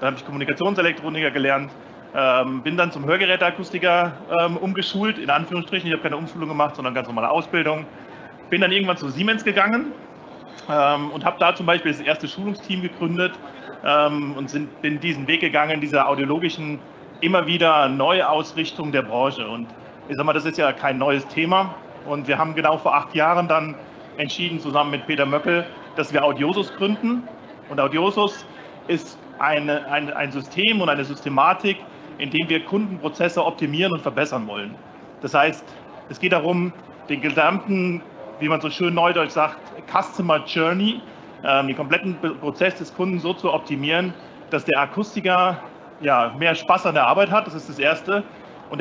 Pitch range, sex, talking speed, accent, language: 145-180 Hz, male, 160 wpm, German, German